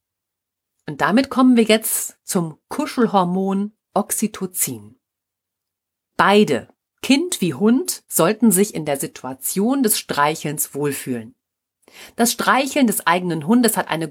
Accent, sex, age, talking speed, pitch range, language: German, female, 40-59, 115 wpm, 155-225 Hz, German